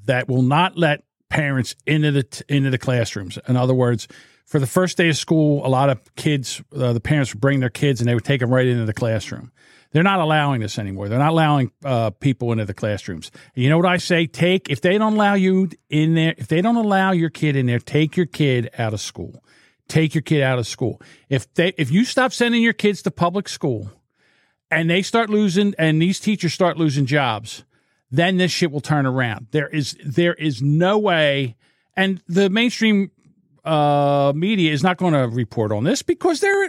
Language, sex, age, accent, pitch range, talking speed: English, male, 50-69, American, 130-195 Hz, 220 wpm